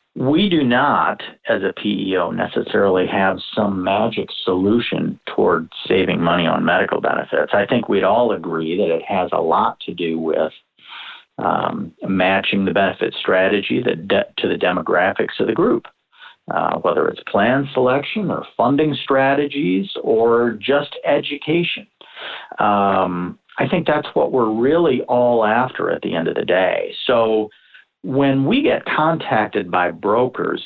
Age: 50-69